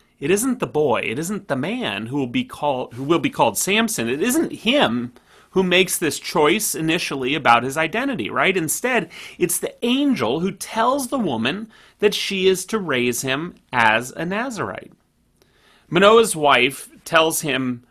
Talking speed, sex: 170 wpm, male